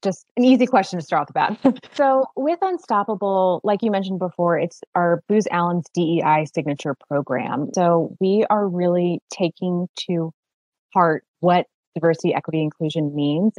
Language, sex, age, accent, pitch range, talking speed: English, female, 20-39, American, 165-200 Hz, 155 wpm